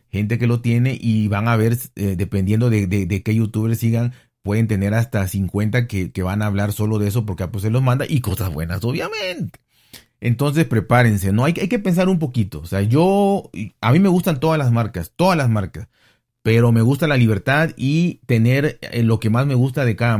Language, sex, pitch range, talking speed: Spanish, male, 110-130 Hz, 220 wpm